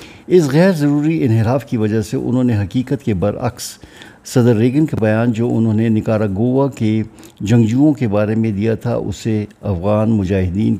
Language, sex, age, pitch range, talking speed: Urdu, male, 50-69, 105-125 Hz, 170 wpm